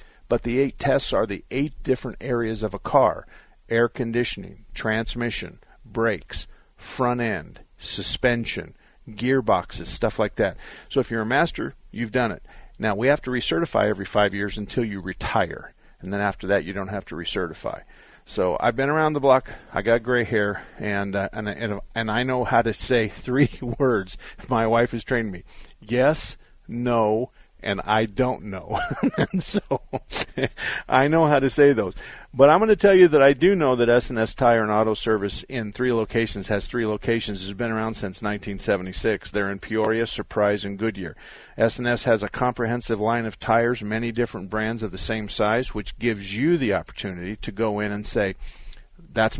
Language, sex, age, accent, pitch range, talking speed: English, male, 50-69, American, 105-125 Hz, 185 wpm